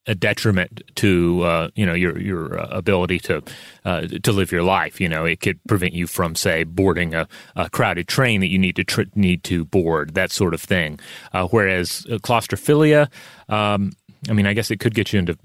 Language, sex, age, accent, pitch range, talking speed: English, male, 30-49, American, 90-115 Hz, 215 wpm